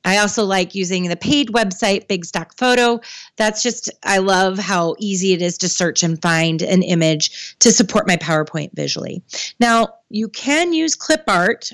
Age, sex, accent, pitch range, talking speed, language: 30-49, female, American, 175-235 Hz, 180 wpm, English